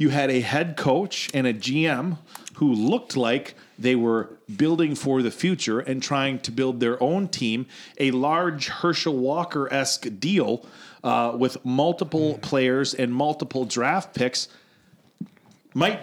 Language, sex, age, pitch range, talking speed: English, male, 40-59, 125-160 Hz, 140 wpm